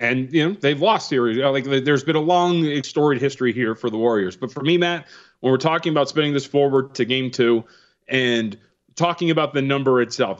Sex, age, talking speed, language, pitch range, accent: male, 30-49, 225 wpm, English, 130-175 Hz, American